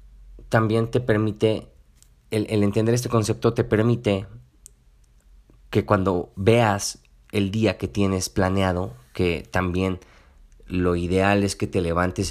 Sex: male